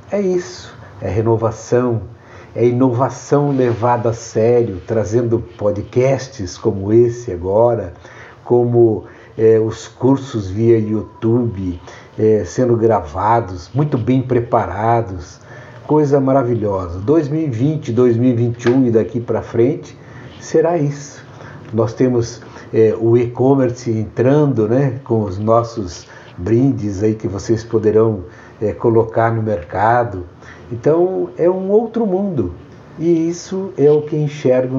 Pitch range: 110-130 Hz